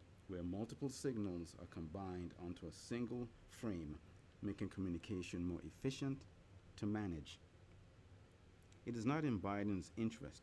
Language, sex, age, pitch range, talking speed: English, male, 50-69, 85-105 Hz, 120 wpm